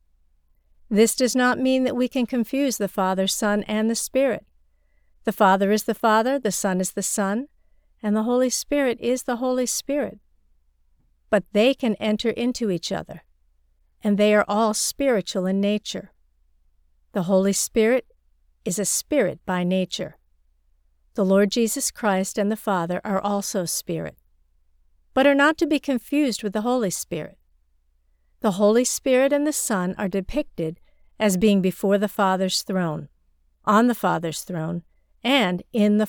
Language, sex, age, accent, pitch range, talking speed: English, female, 50-69, American, 160-230 Hz, 160 wpm